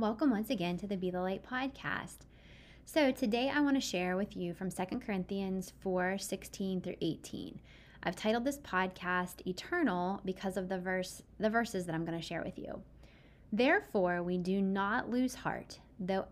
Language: English